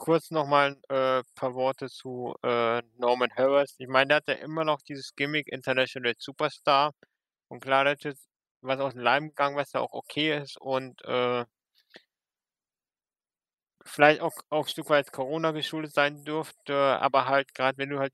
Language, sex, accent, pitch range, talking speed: German, male, German, 130-150 Hz, 180 wpm